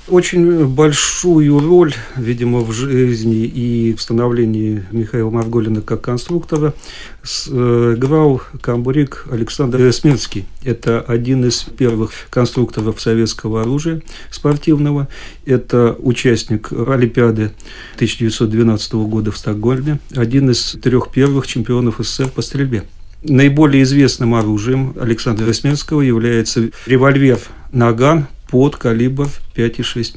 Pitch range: 115-135 Hz